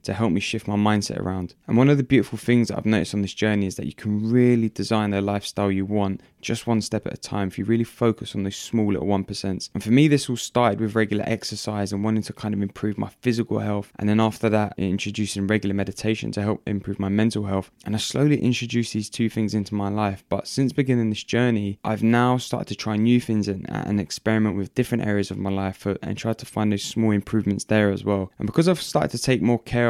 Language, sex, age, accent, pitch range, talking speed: English, male, 10-29, British, 100-115 Hz, 250 wpm